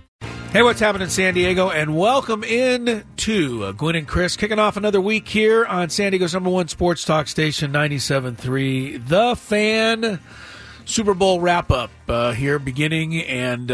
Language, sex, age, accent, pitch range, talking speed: English, male, 40-59, American, 125-185 Hz, 150 wpm